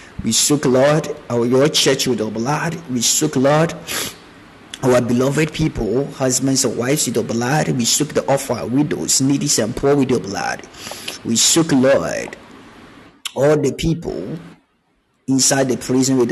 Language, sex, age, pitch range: Japanese, male, 30-49, 115-135 Hz